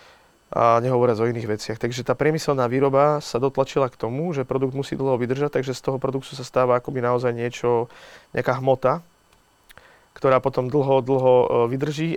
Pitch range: 115-135 Hz